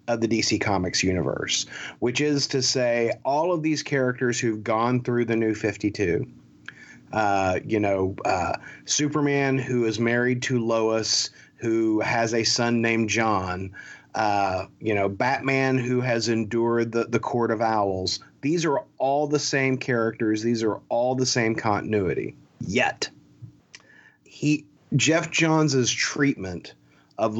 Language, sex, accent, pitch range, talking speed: English, male, American, 110-130 Hz, 135 wpm